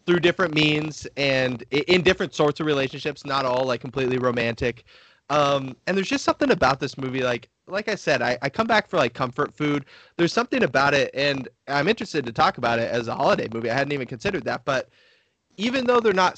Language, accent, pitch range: English, American, 130-175 Hz